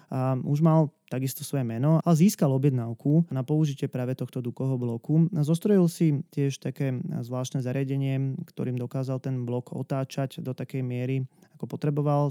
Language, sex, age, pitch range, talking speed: Slovak, male, 20-39, 130-155 Hz, 155 wpm